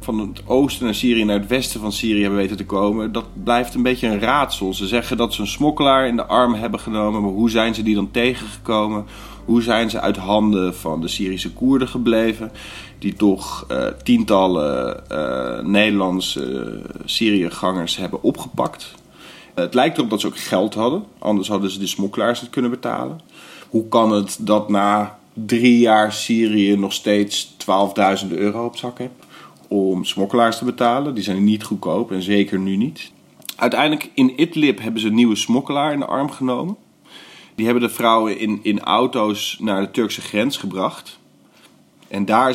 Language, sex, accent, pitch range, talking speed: Dutch, male, Dutch, 100-120 Hz, 175 wpm